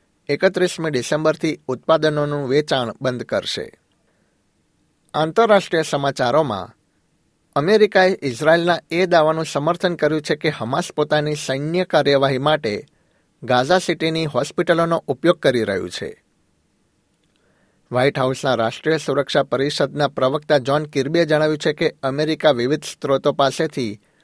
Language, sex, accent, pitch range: Gujarati, male, native, 140-160 Hz